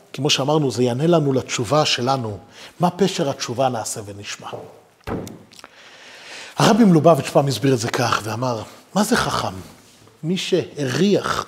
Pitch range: 140-215 Hz